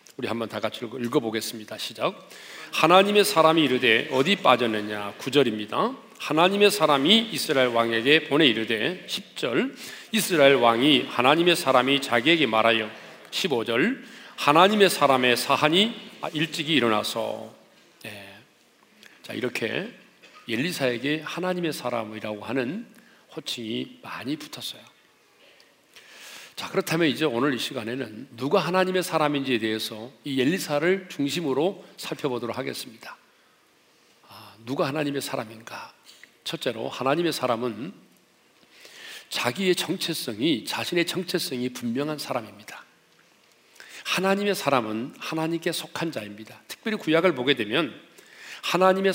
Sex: male